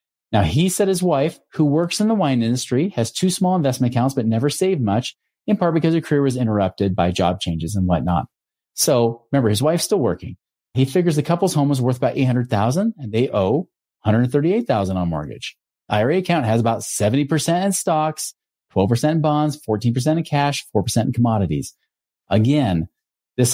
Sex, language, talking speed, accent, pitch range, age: male, English, 180 wpm, American, 110-145 Hz, 30-49